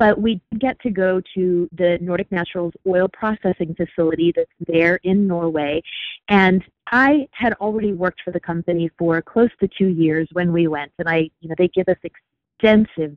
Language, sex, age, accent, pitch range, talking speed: English, female, 30-49, American, 170-205 Hz, 185 wpm